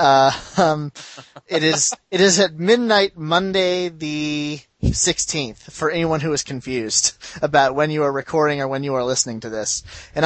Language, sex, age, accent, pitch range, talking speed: English, male, 30-49, American, 135-170 Hz, 170 wpm